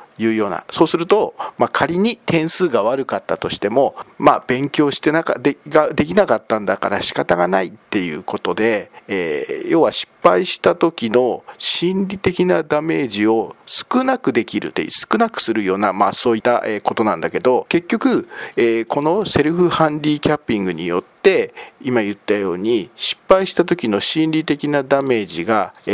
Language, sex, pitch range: Japanese, male, 120-190 Hz